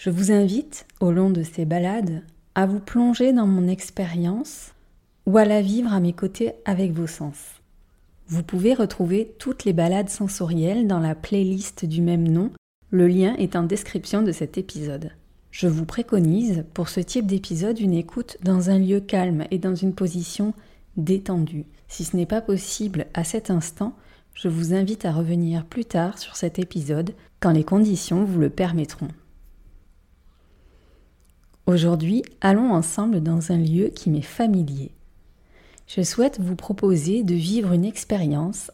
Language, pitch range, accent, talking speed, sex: French, 165-200 Hz, French, 160 wpm, female